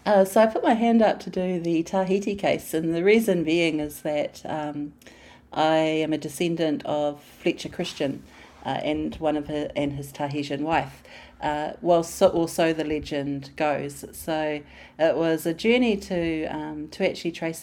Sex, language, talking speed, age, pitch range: female, English, 175 wpm, 40-59, 145-170 Hz